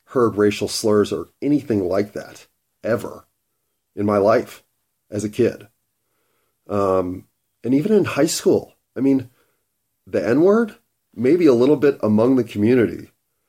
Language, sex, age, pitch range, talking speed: English, male, 40-59, 105-125 Hz, 140 wpm